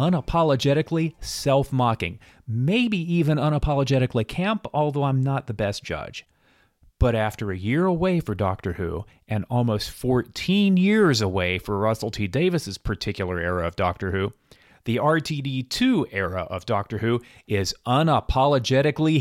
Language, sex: English, male